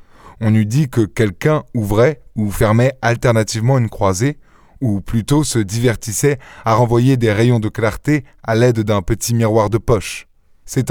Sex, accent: male, French